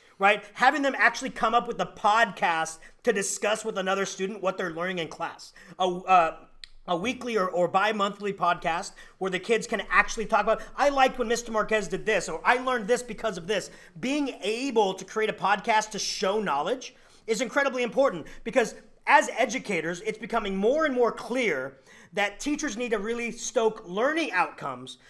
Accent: American